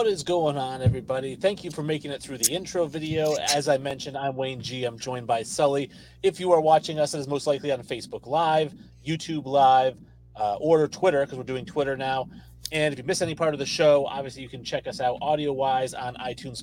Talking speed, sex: 235 wpm, male